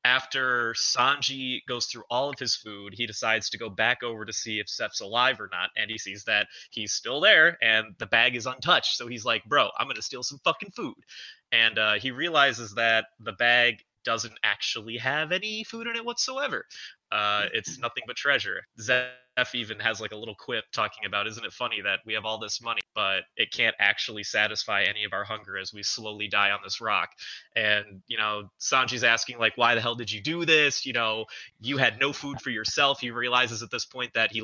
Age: 20-39